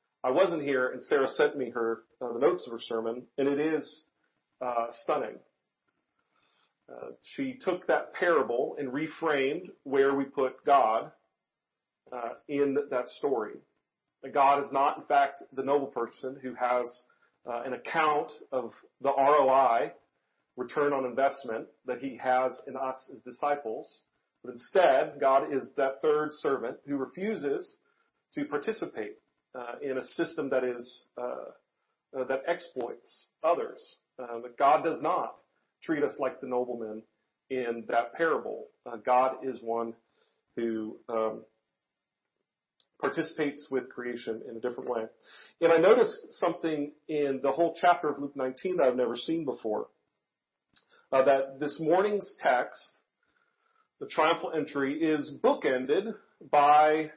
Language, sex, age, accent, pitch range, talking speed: English, male, 40-59, American, 125-170 Hz, 140 wpm